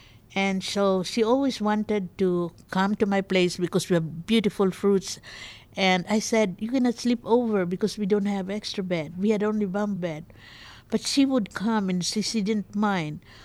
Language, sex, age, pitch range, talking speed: English, female, 50-69, 175-215 Hz, 185 wpm